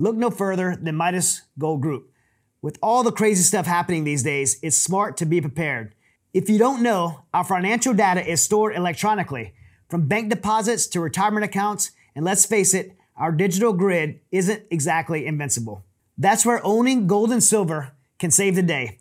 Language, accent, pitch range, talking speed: English, American, 155-210 Hz, 175 wpm